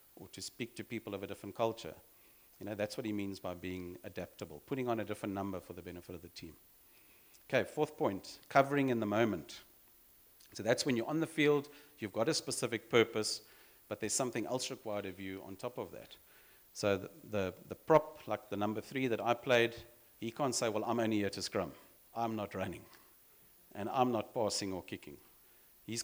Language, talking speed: English, 205 wpm